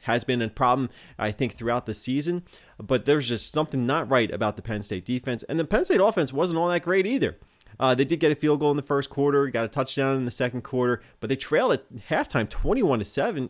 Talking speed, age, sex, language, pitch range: 250 wpm, 30-49, male, English, 110-140 Hz